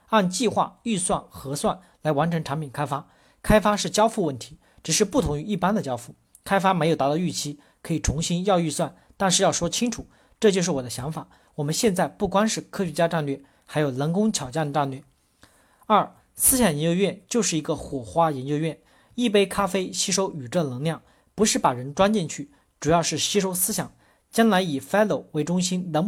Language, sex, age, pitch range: Chinese, male, 40-59, 150-200 Hz